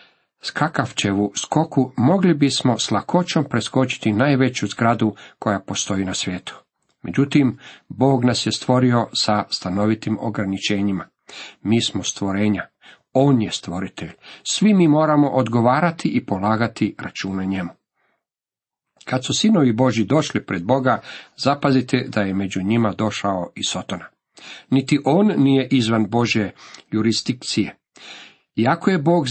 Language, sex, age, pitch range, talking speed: Croatian, male, 50-69, 110-140 Hz, 120 wpm